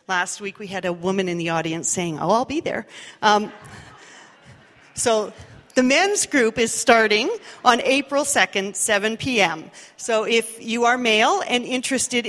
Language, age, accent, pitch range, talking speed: English, 40-59, American, 195-240 Hz, 160 wpm